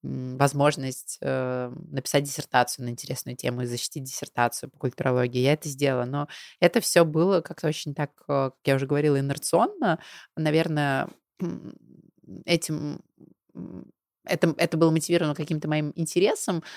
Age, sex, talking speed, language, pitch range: 20-39, female, 125 wpm, Russian, 130-160 Hz